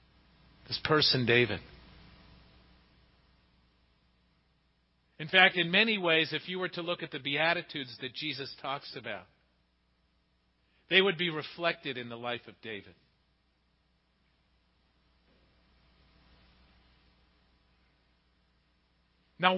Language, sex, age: English, male, 50-69